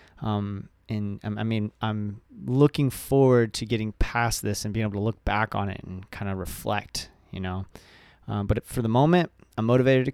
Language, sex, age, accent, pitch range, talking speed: English, male, 20-39, American, 100-120 Hz, 195 wpm